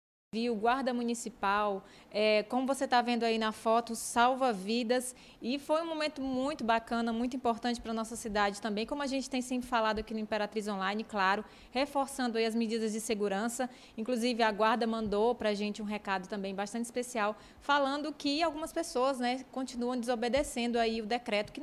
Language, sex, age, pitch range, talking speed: Portuguese, female, 20-39, 215-250 Hz, 185 wpm